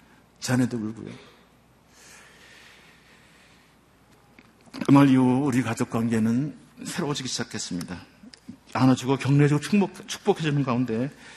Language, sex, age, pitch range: Korean, male, 50-69, 115-150 Hz